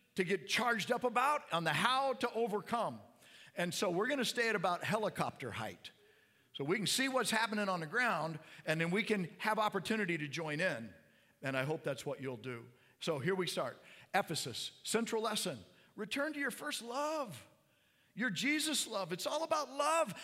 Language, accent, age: English, American, 50-69